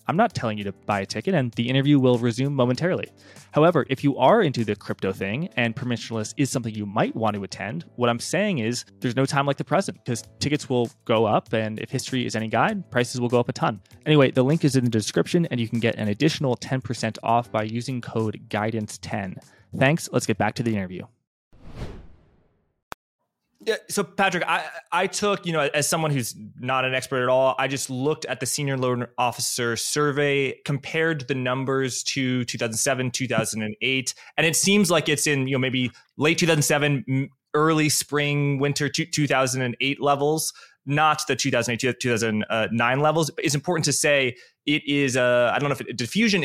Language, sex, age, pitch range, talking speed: English, male, 20-39, 120-150 Hz, 195 wpm